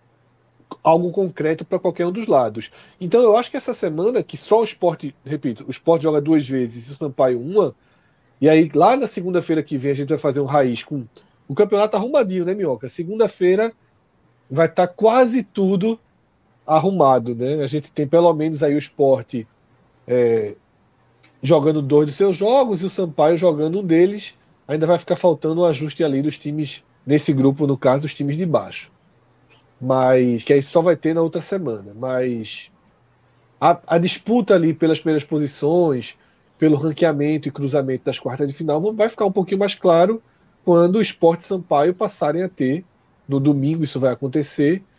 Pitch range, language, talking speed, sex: 140-185 Hz, Portuguese, 175 wpm, male